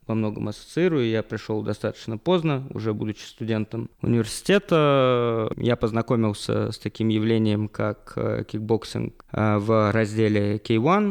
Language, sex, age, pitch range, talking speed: Russian, male, 20-39, 110-130 Hz, 115 wpm